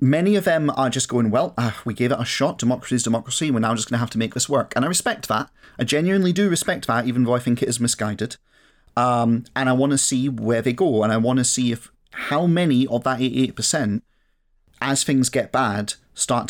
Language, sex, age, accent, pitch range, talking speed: English, male, 30-49, British, 110-140 Hz, 245 wpm